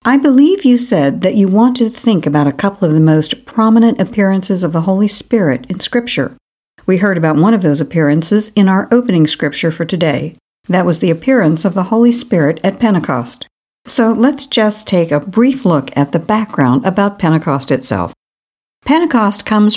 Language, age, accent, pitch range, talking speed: English, 60-79, American, 155-225 Hz, 185 wpm